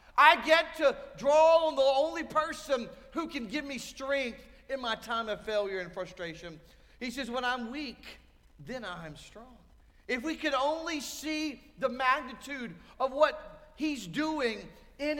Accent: American